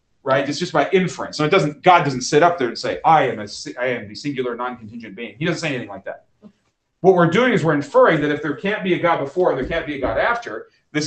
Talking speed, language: 280 wpm, English